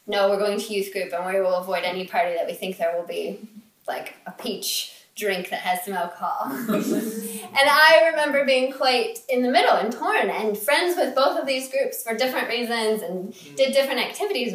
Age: 20-39